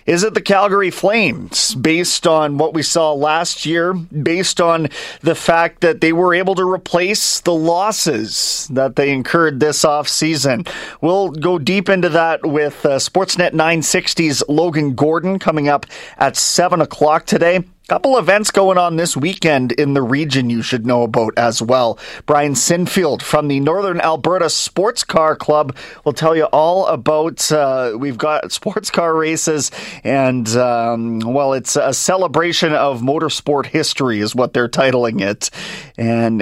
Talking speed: 160 wpm